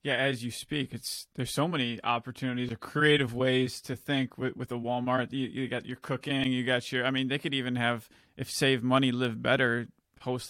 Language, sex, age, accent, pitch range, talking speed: English, male, 20-39, American, 120-145 Hz, 215 wpm